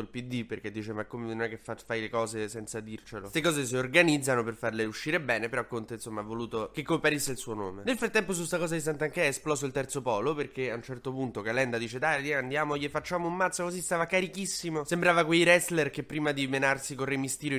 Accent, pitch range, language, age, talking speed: native, 115-150 Hz, Italian, 20-39, 235 wpm